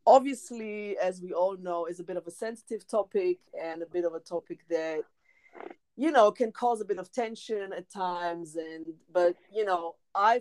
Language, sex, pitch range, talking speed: English, female, 170-220 Hz, 195 wpm